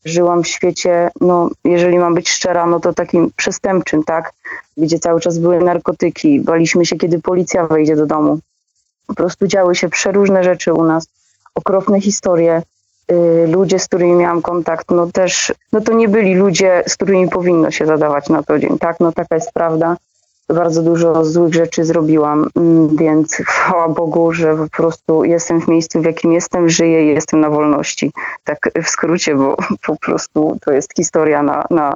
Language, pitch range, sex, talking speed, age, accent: Polish, 160-180 Hz, female, 175 wpm, 30-49, native